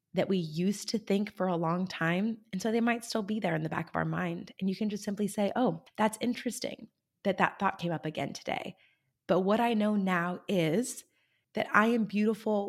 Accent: American